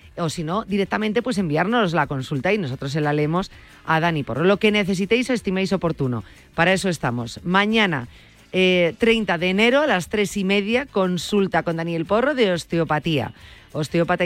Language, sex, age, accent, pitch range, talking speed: Spanish, female, 30-49, Spanish, 170-210 Hz, 175 wpm